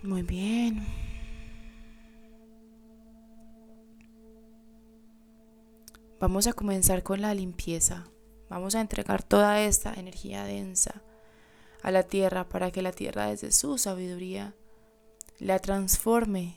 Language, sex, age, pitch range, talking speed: Spanish, female, 20-39, 185-220 Hz, 100 wpm